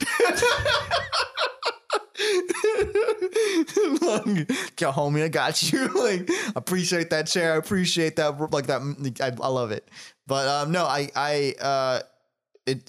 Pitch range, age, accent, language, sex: 100-130 Hz, 20-39, American, English, male